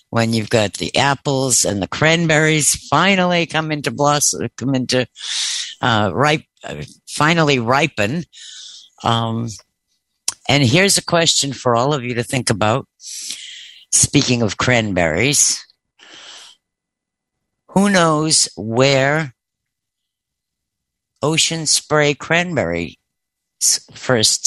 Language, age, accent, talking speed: English, 60-79, American, 100 wpm